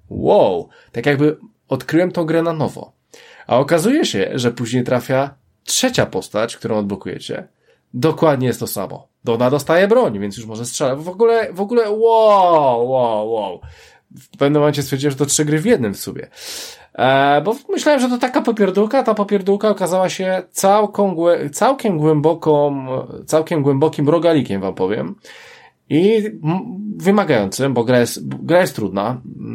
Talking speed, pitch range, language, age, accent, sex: 150 wpm, 125-180 Hz, Polish, 20-39, native, male